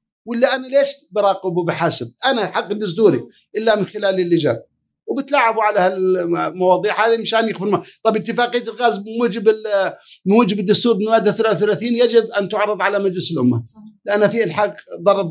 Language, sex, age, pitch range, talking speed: Arabic, male, 50-69, 185-230 Hz, 140 wpm